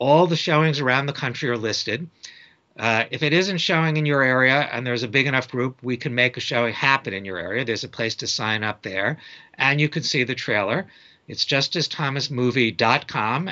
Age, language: 60-79, English